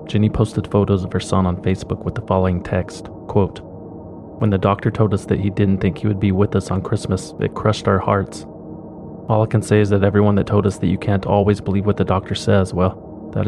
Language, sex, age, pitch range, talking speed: English, male, 30-49, 95-105 Hz, 240 wpm